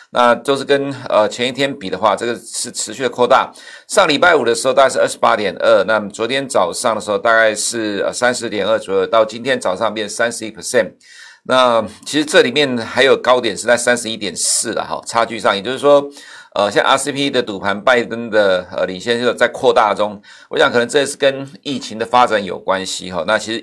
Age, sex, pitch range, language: 50-69, male, 110-140 Hz, Chinese